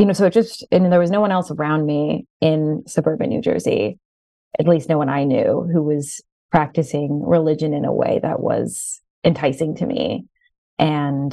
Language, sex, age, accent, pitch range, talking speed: English, female, 20-39, American, 145-170 Hz, 190 wpm